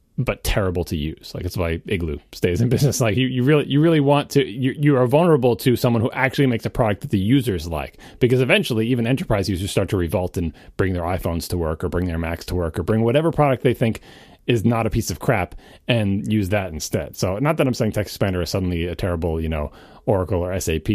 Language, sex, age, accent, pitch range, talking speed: English, male, 30-49, American, 95-135 Hz, 245 wpm